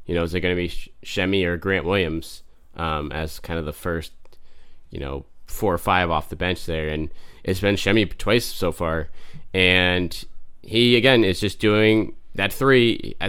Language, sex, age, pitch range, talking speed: English, male, 20-39, 85-100 Hz, 190 wpm